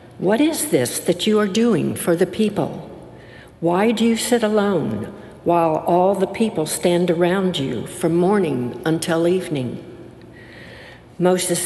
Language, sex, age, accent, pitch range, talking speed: English, female, 60-79, American, 165-210 Hz, 140 wpm